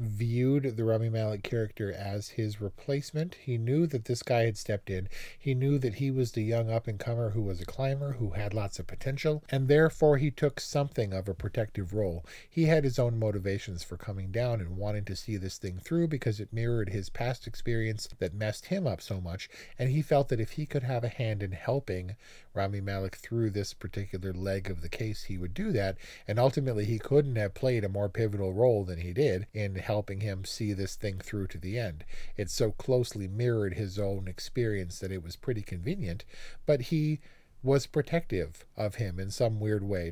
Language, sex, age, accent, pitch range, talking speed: English, male, 40-59, American, 100-125 Hz, 210 wpm